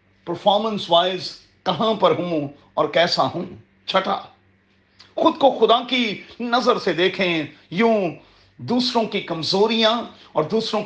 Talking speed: 120 wpm